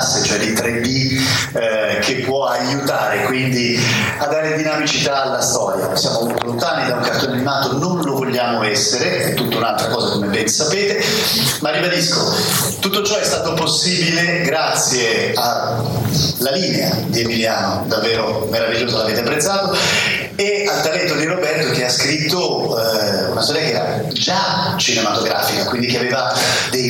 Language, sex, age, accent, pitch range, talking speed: Italian, male, 40-59, native, 115-150 Hz, 145 wpm